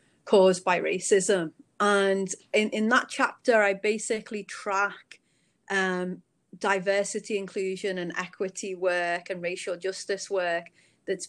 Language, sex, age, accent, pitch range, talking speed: English, female, 30-49, British, 180-210 Hz, 115 wpm